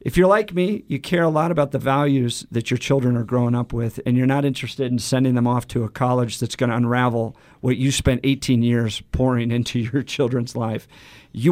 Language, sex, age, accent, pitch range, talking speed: English, male, 50-69, American, 125-160 Hz, 230 wpm